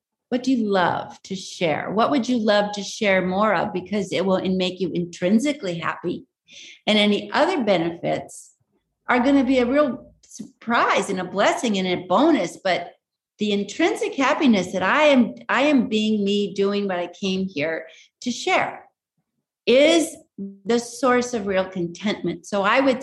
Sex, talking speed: female, 170 wpm